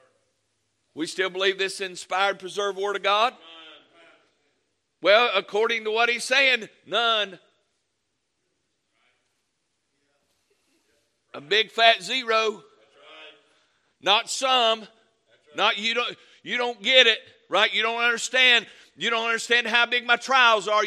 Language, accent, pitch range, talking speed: English, American, 205-260 Hz, 120 wpm